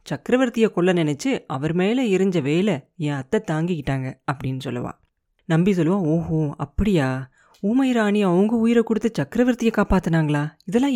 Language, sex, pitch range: Tamil, female, 160-225 Hz